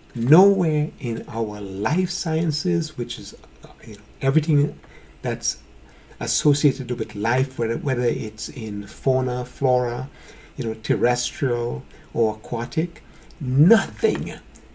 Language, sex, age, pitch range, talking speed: English, male, 60-79, 125-170 Hz, 105 wpm